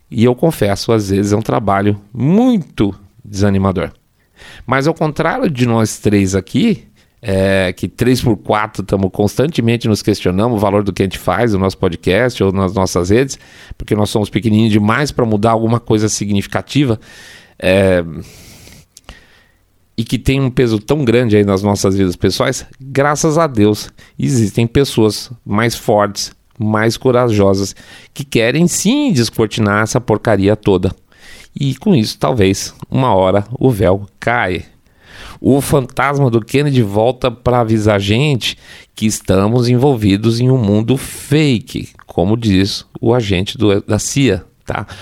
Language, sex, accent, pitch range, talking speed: Portuguese, male, Brazilian, 100-125 Hz, 150 wpm